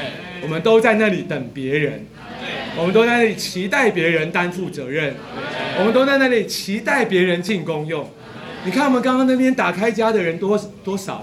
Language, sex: Chinese, male